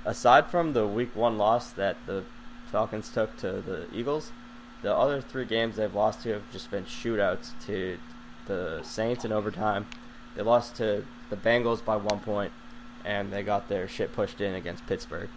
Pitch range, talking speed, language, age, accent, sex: 105-120 Hz, 180 wpm, English, 20-39, American, male